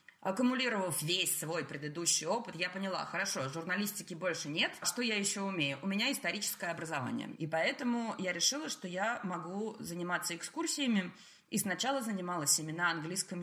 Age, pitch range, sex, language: 20-39, 170-220 Hz, female, Russian